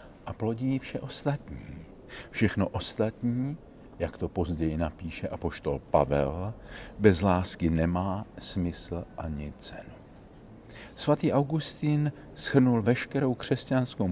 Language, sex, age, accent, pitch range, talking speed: Czech, male, 50-69, native, 90-120 Hz, 100 wpm